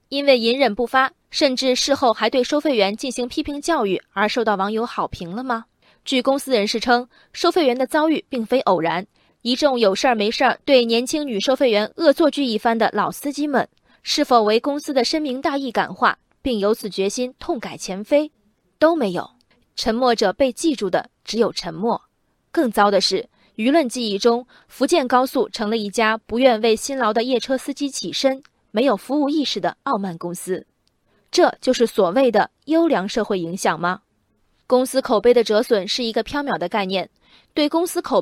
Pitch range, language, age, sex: 210-280 Hz, Chinese, 20-39, female